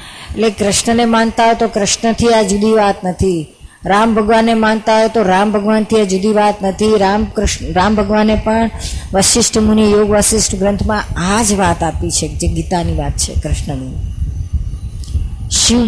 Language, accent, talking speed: Gujarati, native, 165 wpm